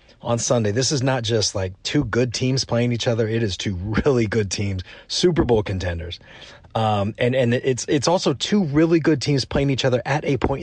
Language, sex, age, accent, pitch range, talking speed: English, male, 30-49, American, 100-135 Hz, 215 wpm